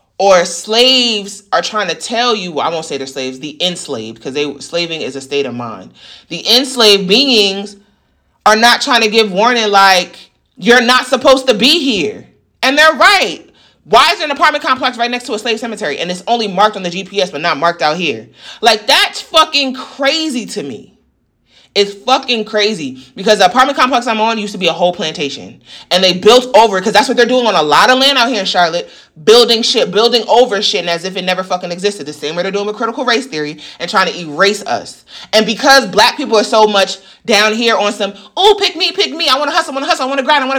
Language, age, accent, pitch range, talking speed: English, 30-49, American, 185-260 Hz, 235 wpm